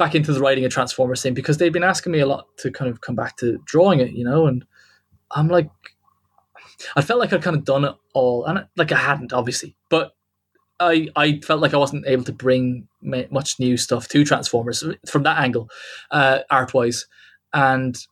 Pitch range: 130-155 Hz